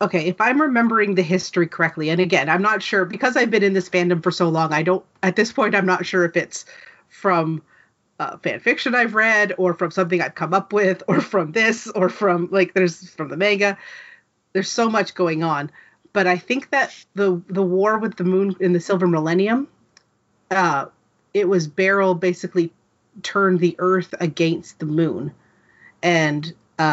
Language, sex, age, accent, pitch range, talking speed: English, female, 30-49, American, 160-190 Hz, 190 wpm